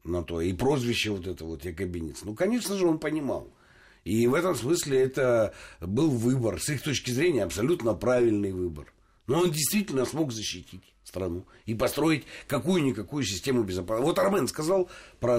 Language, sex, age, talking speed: Russian, male, 60-79, 170 wpm